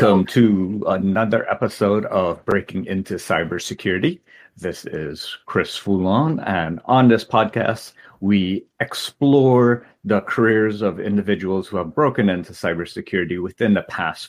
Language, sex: English, male